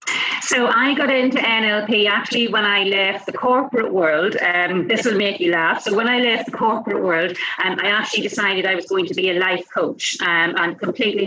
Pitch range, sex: 195-250 Hz, female